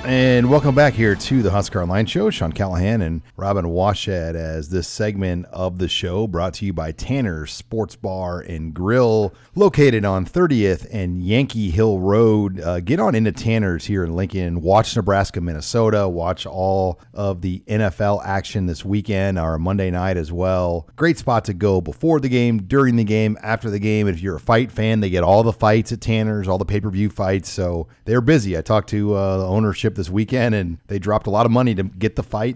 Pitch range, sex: 95-115 Hz, male